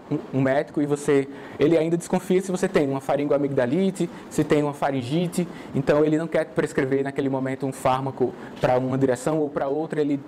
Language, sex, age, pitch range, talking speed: Portuguese, male, 20-39, 135-160 Hz, 185 wpm